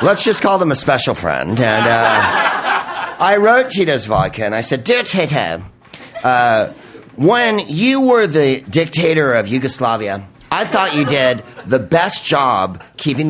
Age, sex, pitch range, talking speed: 50-69, male, 115-160 Hz, 155 wpm